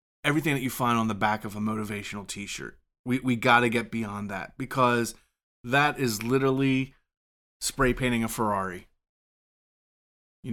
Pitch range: 100-120 Hz